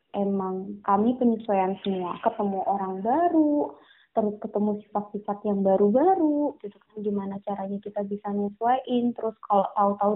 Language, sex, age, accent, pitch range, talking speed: Indonesian, female, 20-39, native, 195-230 Hz, 130 wpm